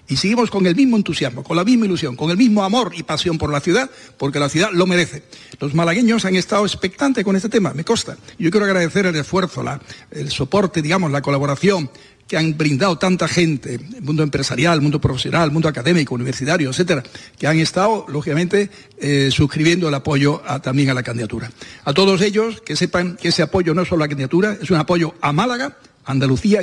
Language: Spanish